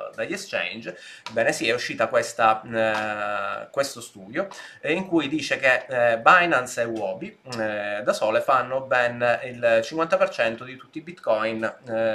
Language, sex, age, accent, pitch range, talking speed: Italian, male, 20-39, native, 110-150 Hz, 150 wpm